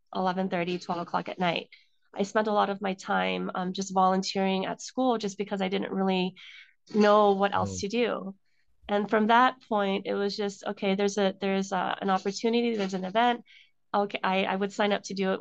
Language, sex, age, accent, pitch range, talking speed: English, female, 30-49, American, 195-220 Hz, 205 wpm